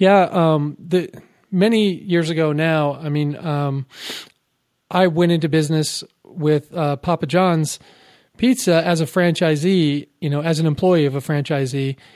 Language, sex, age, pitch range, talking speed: English, male, 40-59, 150-185 Hz, 150 wpm